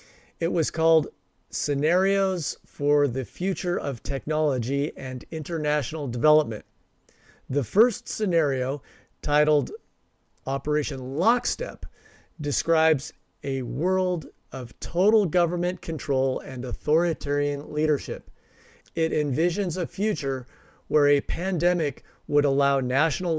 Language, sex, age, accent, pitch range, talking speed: English, male, 50-69, American, 135-175 Hz, 95 wpm